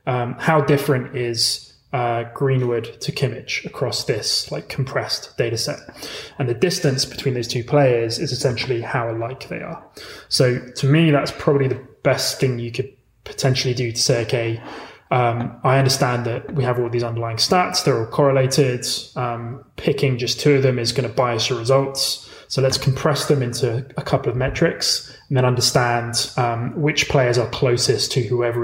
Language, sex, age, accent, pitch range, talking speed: English, male, 20-39, British, 120-140 Hz, 180 wpm